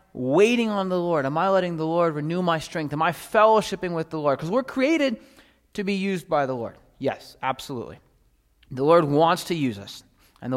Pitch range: 135-185 Hz